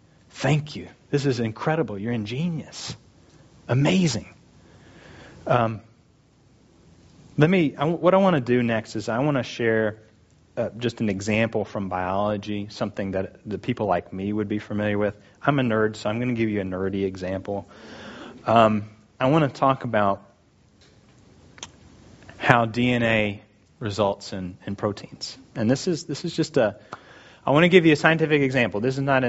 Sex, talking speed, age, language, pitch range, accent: male, 165 wpm, 30-49, English, 105-130 Hz, American